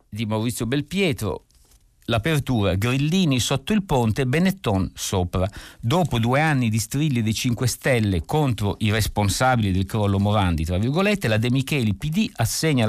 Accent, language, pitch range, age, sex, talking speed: native, Italian, 105-140 Hz, 50-69, male, 145 wpm